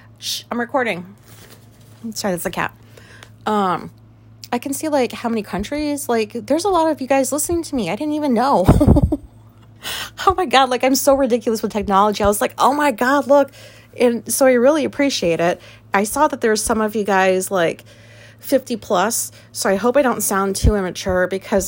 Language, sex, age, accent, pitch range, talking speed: English, female, 30-49, American, 160-235 Hz, 195 wpm